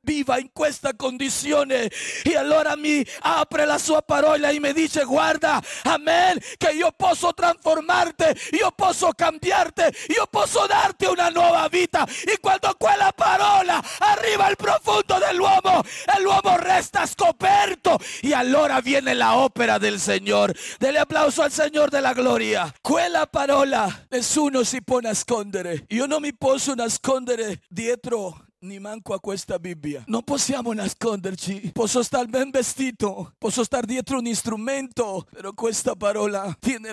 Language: Italian